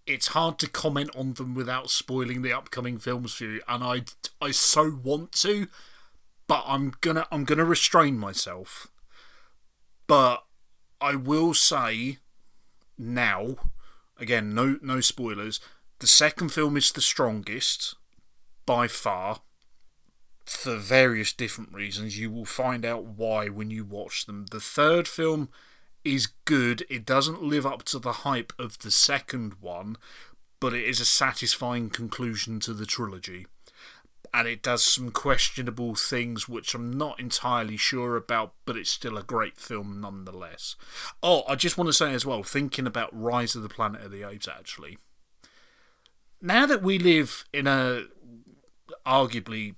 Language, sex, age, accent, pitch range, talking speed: English, male, 30-49, British, 110-135 Hz, 150 wpm